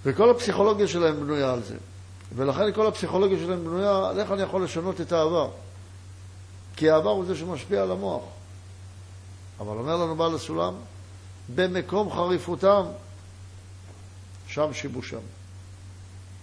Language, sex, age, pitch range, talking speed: Hebrew, male, 60-79, 95-150 Hz, 120 wpm